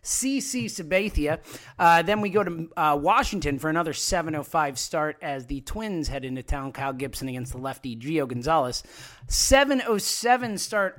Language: English